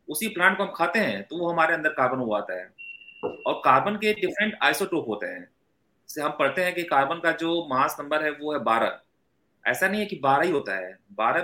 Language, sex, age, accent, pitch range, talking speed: English, male, 30-49, Indian, 135-185 Hz, 135 wpm